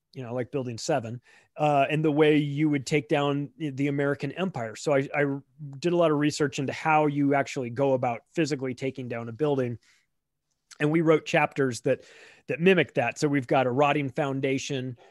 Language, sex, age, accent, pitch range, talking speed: English, male, 30-49, American, 130-155 Hz, 195 wpm